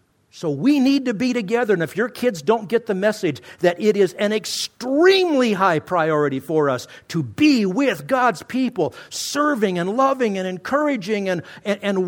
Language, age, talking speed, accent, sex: English, 50-69, 180 wpm, American, male